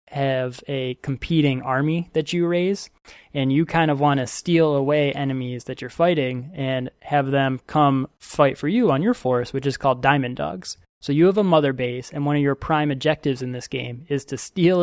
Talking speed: 210 wpm